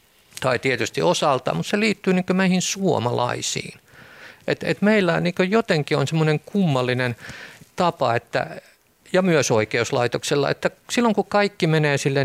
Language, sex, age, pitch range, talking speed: Finnish, male, 50-69, 120-170 Hz, 135 wpm